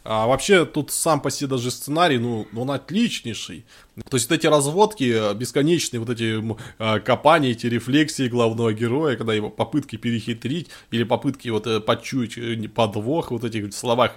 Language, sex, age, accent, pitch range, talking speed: Russian, male, 20-39, native, 120-155 Hz, 155 wpm